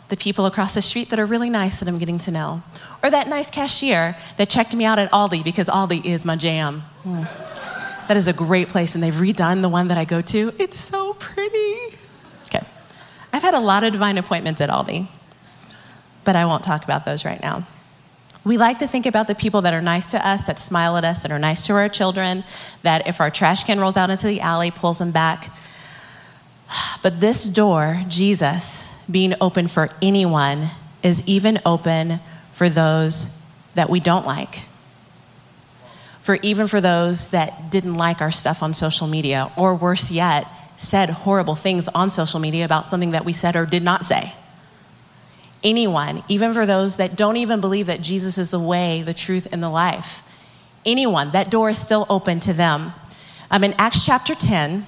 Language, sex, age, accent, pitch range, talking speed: English, female, 30-49, American, 165-205 Hz, 195 wpm